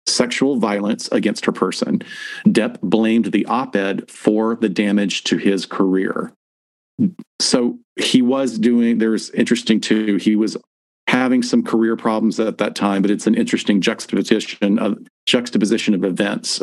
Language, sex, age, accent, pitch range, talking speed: English, male, 40-59, American, 105-125 Hz, 145 wpm